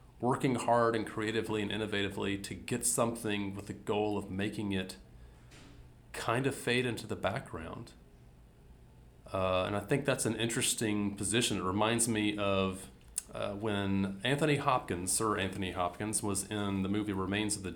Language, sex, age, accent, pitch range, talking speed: English, male, 30-49, American, 95-115 Hz, 160 wpm